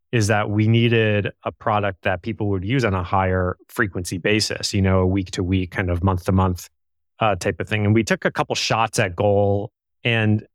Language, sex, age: English, male, 30-49